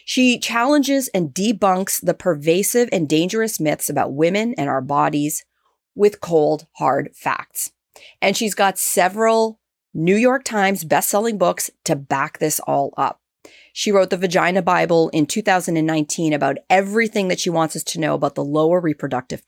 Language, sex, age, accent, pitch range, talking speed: English, female, 30-49, American, 160-215 Hz, 155 wpm